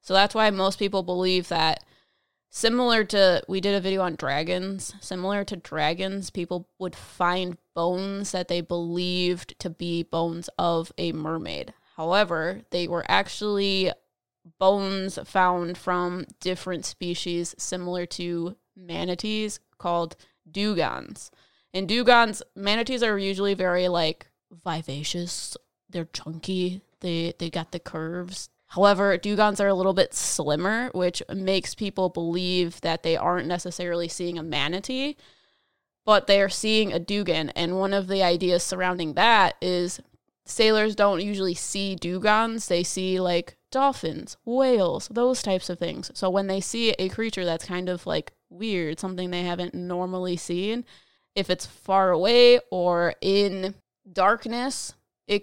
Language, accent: English, American